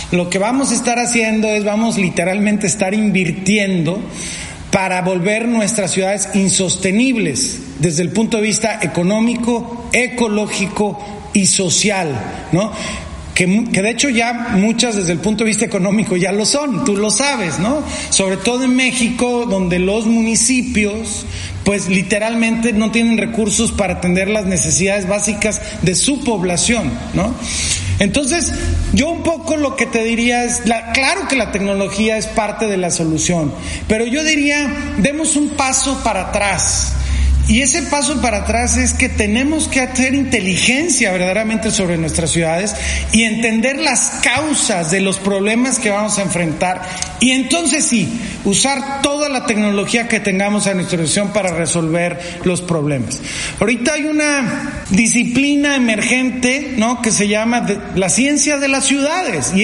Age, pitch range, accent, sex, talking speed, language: 40-59, 190-240 Hz, Mexican, male, 150 wpm, Spanish